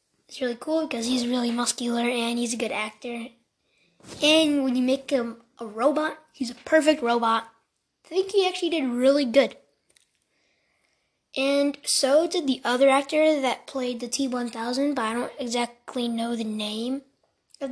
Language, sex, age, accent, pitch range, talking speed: English, female, 10-29, American, 240-300 Hz, 165 wpm